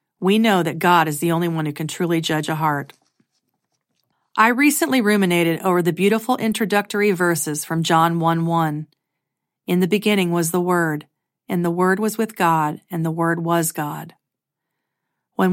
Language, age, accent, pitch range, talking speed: English, 40-59, American, 165-205 Hz, 175 wpm